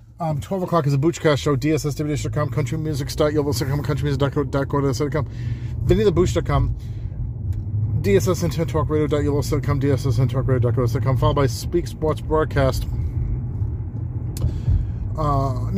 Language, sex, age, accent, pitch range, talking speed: English, male, 30-49, American, 110-135 Hz, 90 wpm